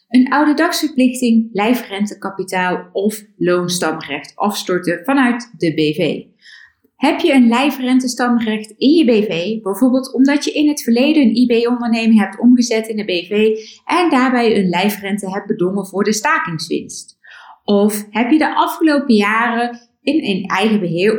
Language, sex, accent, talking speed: Dutch, female, Dutch, 140 wpm